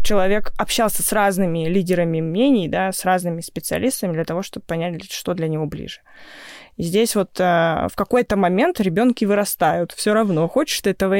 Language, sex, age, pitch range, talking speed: Russian, female, 20-39, 175-225 Hz, 170 wpm